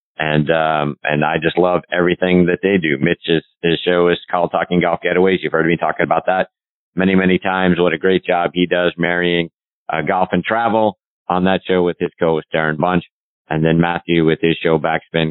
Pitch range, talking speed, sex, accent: 80-115 Hz, 210 wpm, male, American